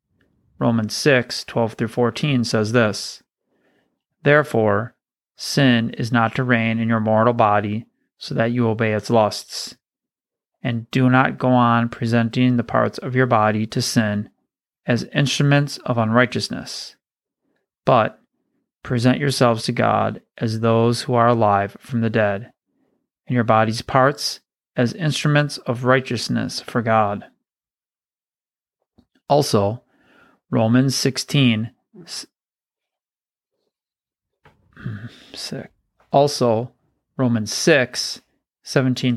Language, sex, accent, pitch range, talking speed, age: English, male, American, 115-130 Hz, 105 wpm, 30-49